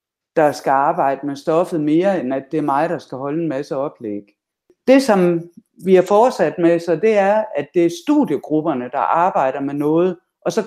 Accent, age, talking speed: native, 60-79, 200 wpm